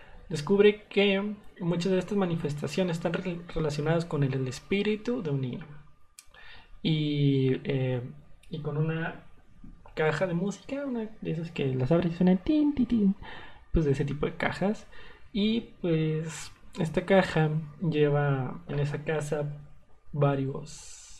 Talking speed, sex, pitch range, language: 125 wpm, male, 145-185 Hz, Spanish